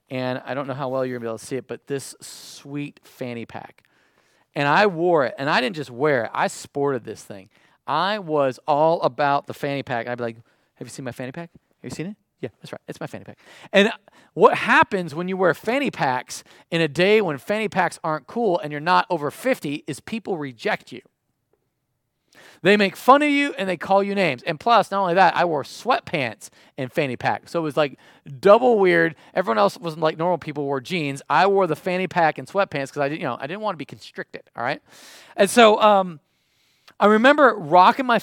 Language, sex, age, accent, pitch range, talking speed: English, male, 40-59, American, 130-185 Hz, 230 wpm